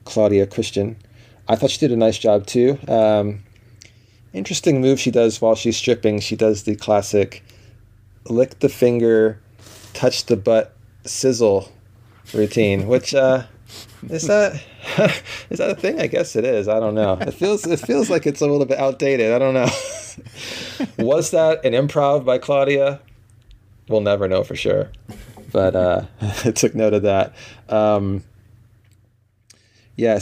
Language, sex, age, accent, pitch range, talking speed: English, male, 30-49, American, 105-120 Hz, 155 wpm